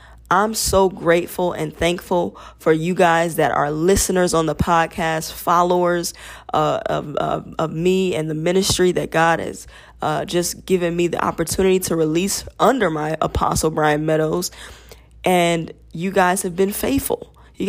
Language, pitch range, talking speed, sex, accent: English, 165-205 Hz, 155 wpm, female, American